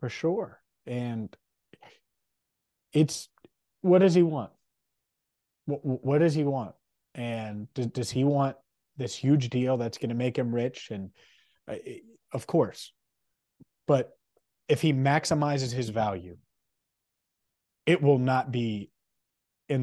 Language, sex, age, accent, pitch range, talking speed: English, male, 30-49, American, 110-140 Hz, 125 wpm